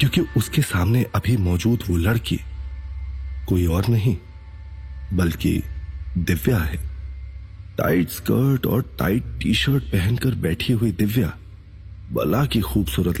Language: Hindi